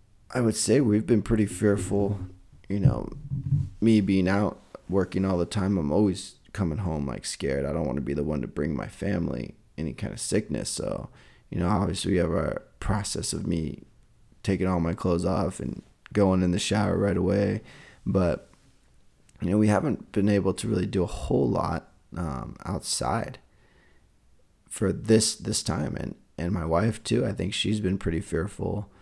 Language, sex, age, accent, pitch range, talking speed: English, male, 20-39, American, 90-110 Hz, 185 wpm